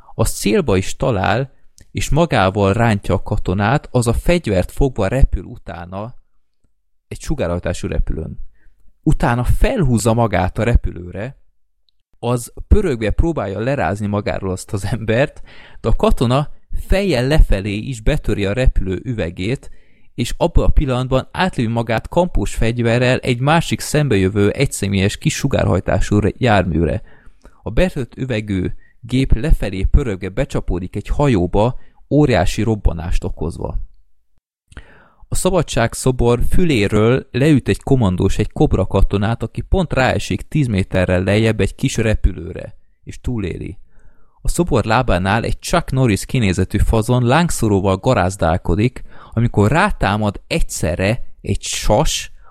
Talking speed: 120 wpm